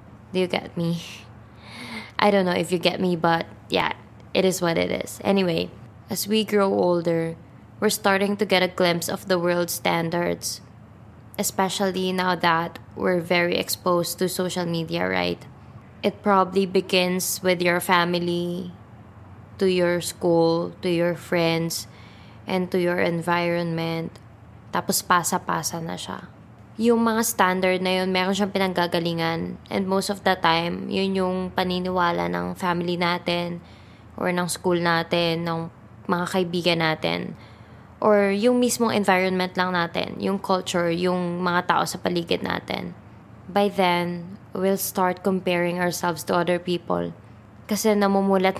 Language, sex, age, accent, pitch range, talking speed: English, female, 20-39, Filipino, 165-185 Hz, 140 wpm